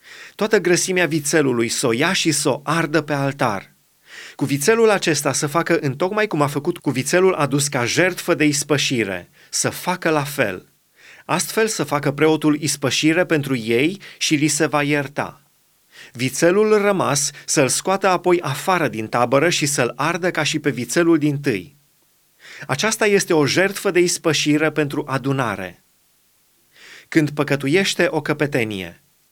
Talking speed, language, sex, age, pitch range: 150 wpm, Romanian, male, 30-49, 140-175 Hz